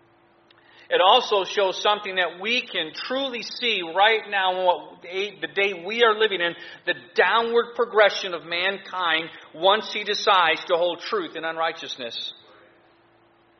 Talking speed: 130 wpm